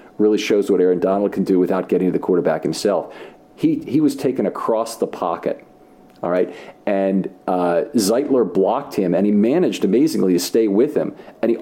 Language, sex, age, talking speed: English, male, 50-69, 190 wpm